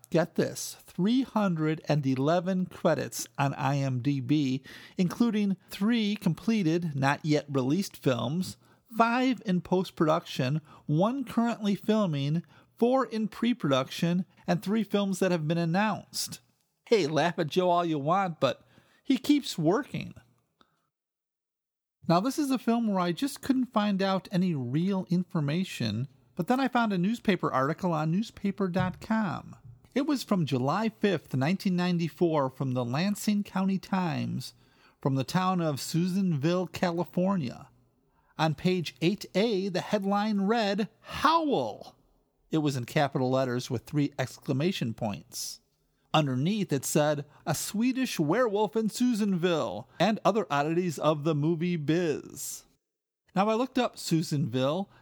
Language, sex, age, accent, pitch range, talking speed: English, male, 40-59, American, 150-205 Hz, 130 wpm